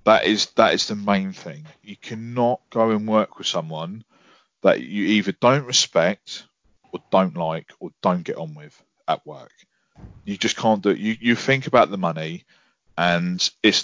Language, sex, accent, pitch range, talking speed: English, male, British, 95-120 Hz, 180 wpm